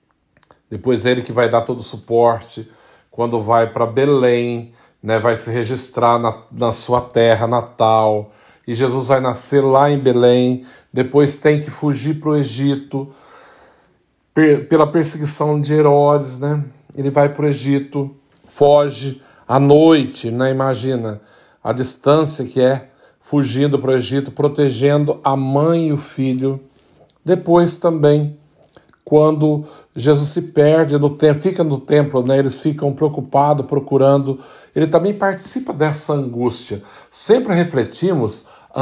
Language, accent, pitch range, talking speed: Portuguese, Brazilian, 125-150 Hz, 135 wpm